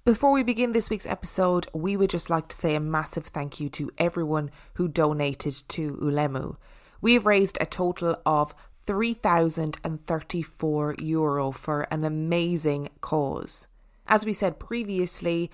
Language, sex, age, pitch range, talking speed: English, female, 20-39, 155-200 Hz, 145 wpm